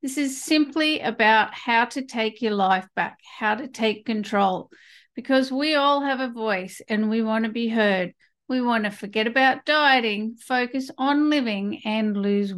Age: 50-69